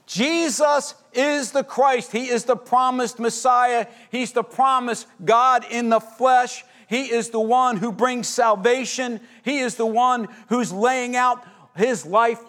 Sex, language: male, English